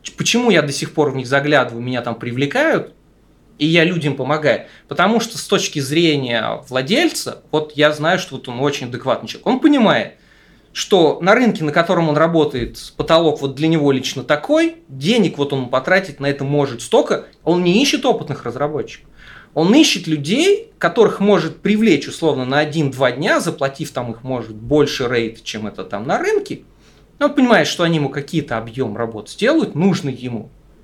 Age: 30-49